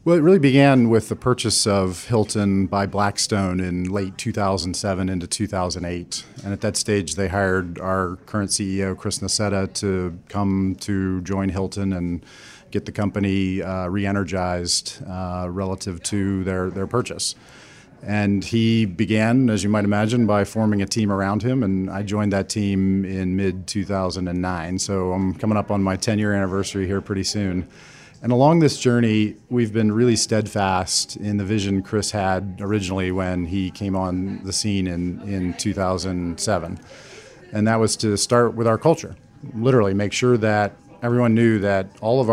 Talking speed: 165 wpm